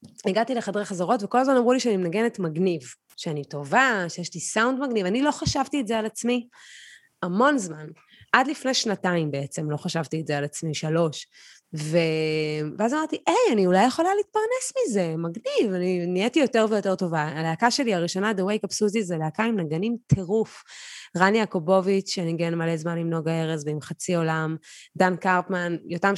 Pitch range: 170-230 Hz